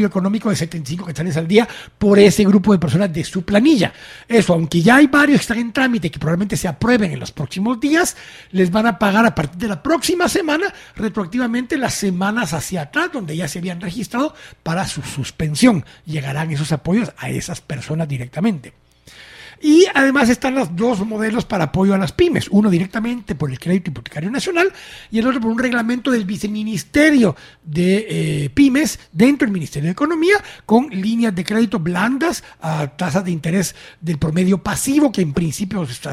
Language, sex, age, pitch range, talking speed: Spanish, male, 60-79, 165-245 Hz, 185 wpm